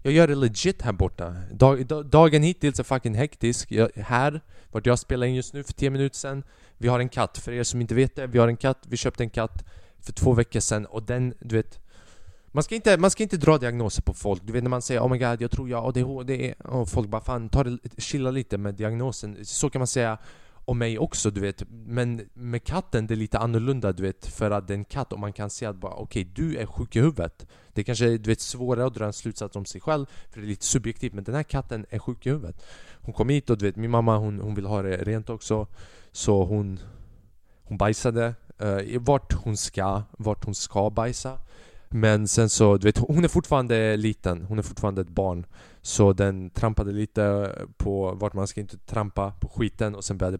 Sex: male